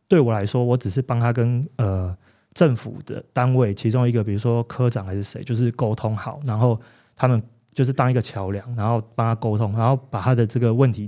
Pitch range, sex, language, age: 110-130 Hz, male, Chinese, 20-39